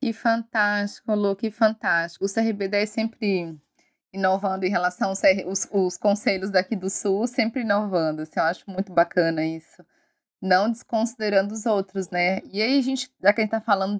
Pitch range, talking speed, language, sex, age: 175-215 Hz, 180 wpm, Portuguese, female, 20-39